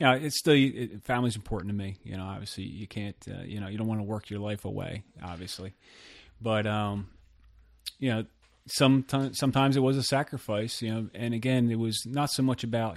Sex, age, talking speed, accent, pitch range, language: male, 30-49, 215 wpm, American, 105-120 Hz, English